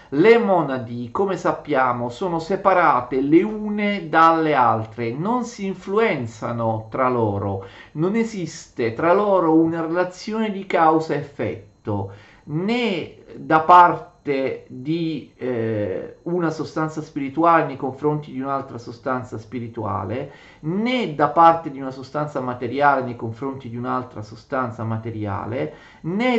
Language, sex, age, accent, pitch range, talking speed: Italian, male, 40-59, native, 120-175 Hz, 120 wpm